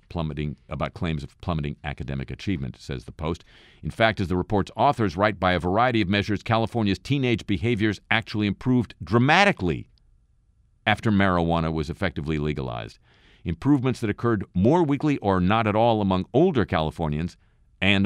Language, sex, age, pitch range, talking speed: English, male, 50-69, 80-105 Hz, 155 wpm